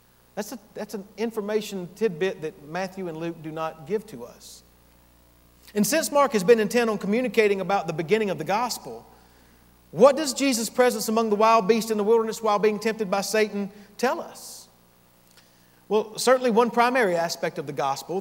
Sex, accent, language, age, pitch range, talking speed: male, American, English, 50-69, 145-220 Hz, 180 wpm